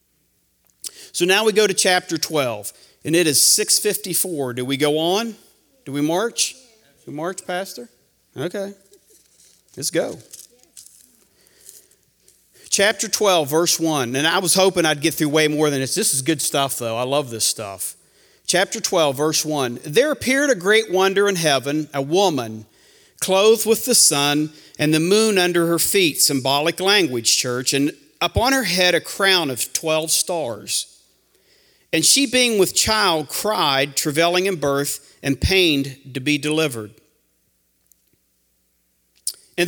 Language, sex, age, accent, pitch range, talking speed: English, male, 50-69, American, 135-190 Hz, 150 wpm